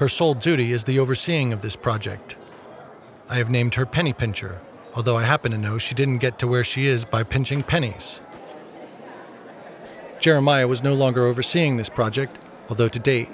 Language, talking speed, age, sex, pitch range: English, 180 wpm, 40-59, male, 120-140 Hz